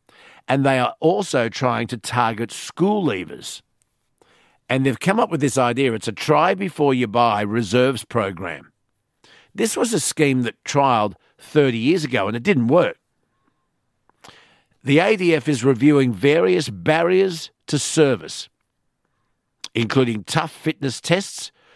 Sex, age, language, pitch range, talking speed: male, 50-69, English, 120-155 Hz, 125 wpm